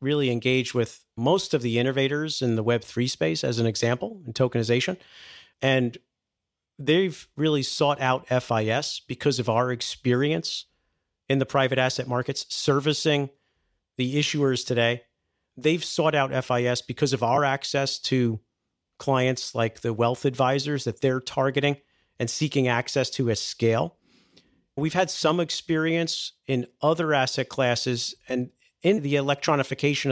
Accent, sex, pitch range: American, male, 120-145 Hz